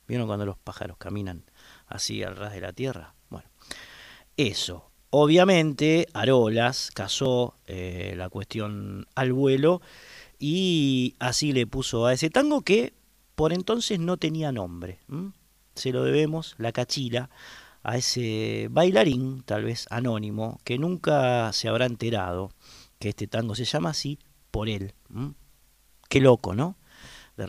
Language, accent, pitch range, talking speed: Spanish, Argentinian, 105-135 Hz, 135 wpm